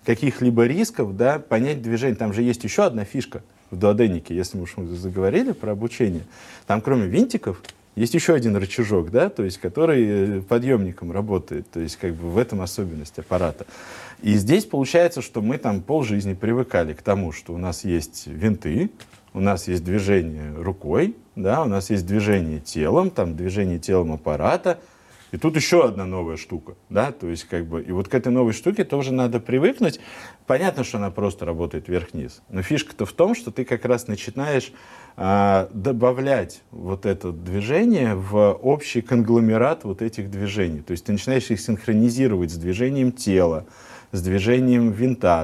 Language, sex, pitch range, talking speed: Russian, male, 90-120 Hz, 170 wpm